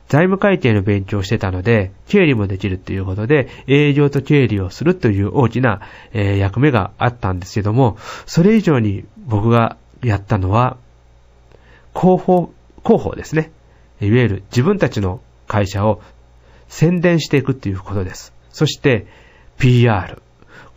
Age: 40-59